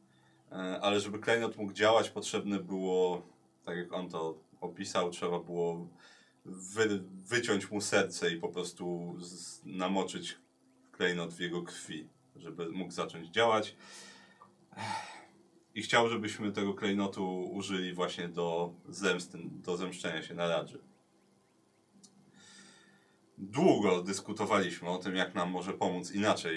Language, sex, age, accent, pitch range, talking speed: Polish, male, 30-49, native, 80-95 Hz, 120 wpm